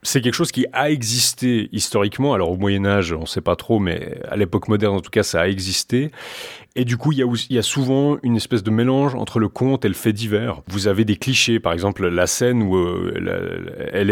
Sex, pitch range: male, 100-120 Hz